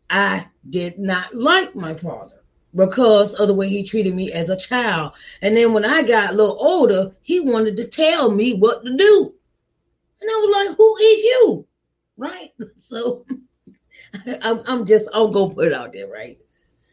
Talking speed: 190 wpm